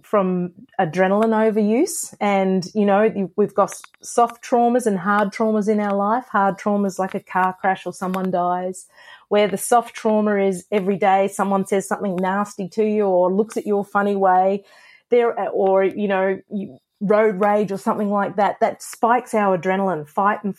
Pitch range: 190-230 Hz